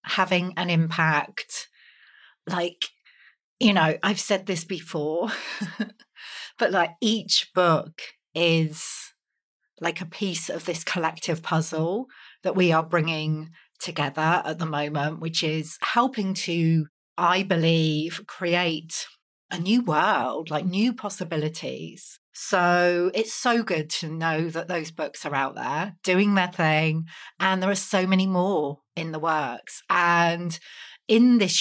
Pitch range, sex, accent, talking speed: 160-200 Hz, female, British, 135 wpm